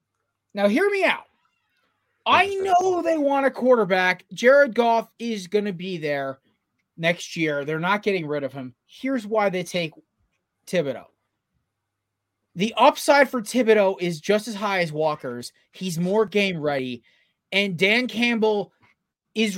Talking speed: 145 wpm